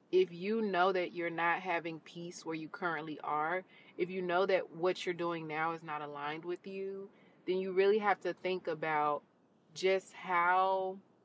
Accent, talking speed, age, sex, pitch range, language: American, 180 wpm, 30-49, female, 165-190 Hz, English